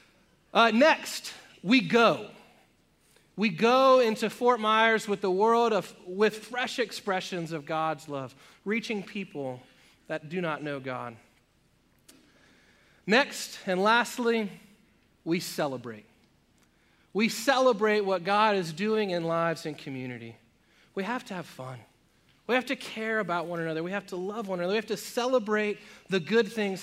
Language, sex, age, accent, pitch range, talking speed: English, male, 30-49, American, 170-230 Hz, 150 wpm